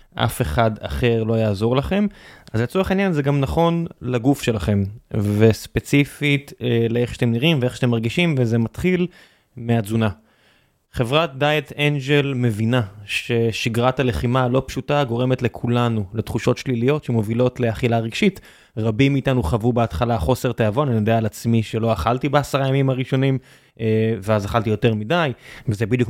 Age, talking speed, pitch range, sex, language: 20-39, 140 wpm, 115-135 Hz, male, Hebrew